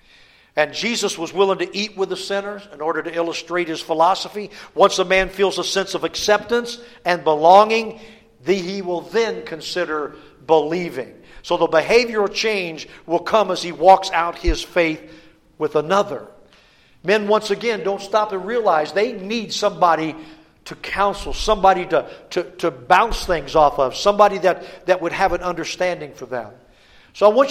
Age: 50-69